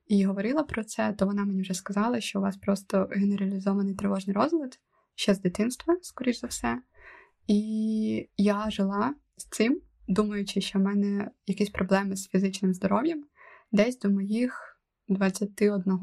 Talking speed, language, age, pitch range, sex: 150 wpm, Ukrainian, 20-39, 195-220 Hz, female